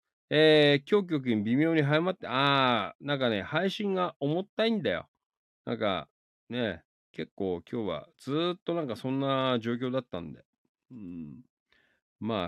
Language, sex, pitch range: Japanese, male, 105-150 Hz